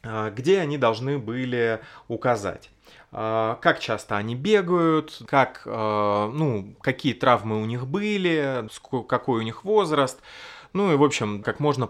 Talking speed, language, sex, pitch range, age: 130 wpm, Russian, male, 110-145 Hz, 20-39